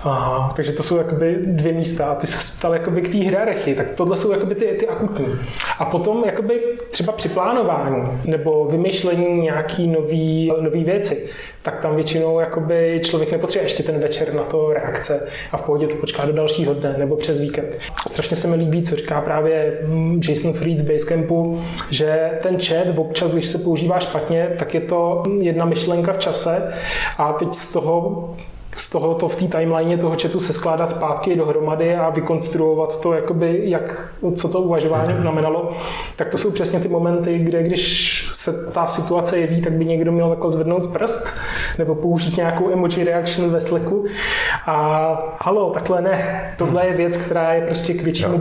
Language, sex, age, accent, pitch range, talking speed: Czech, male, 20-39, native, 155-175 Hz, 175 wpm